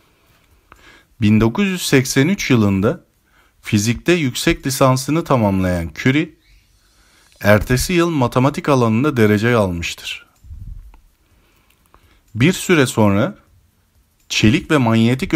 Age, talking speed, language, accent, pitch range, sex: 50-69, 75 wpm, Turkish, native, 100-145 Hz, male